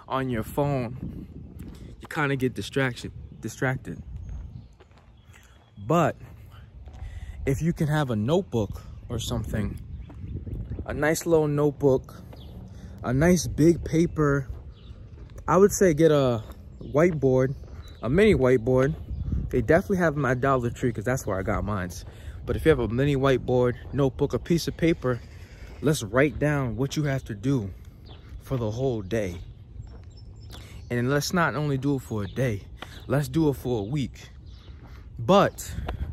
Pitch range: 100-145 Hz